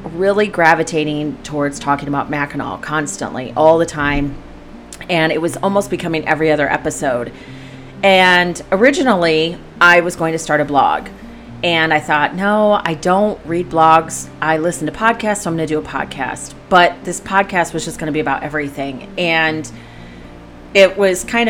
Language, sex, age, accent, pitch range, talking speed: English, female, 30-49, American, 150-180 Hz, 165 wpm